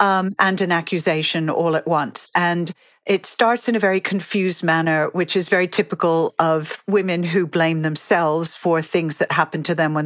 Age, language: 40-59, English